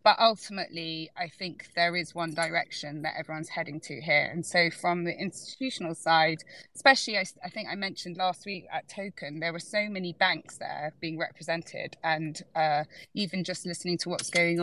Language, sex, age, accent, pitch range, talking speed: English, female, 20-39, British, 165-190 Hz, 185 wpm